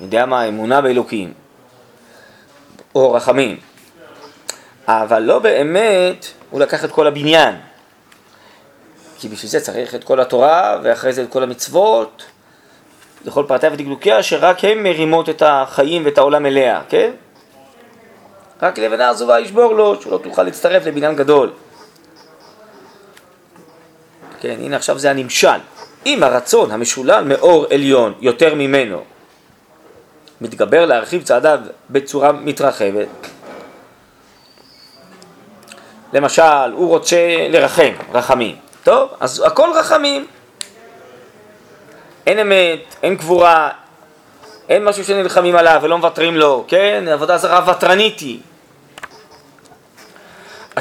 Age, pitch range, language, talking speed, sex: 30-49, 140-185 Hz, Hebrew, 105 wpm, male